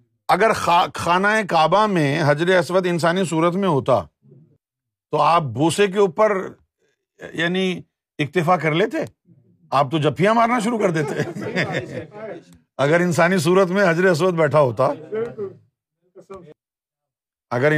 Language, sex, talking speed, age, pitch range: Urdu, male, 120 wpm, 50-69, 140-195 Hz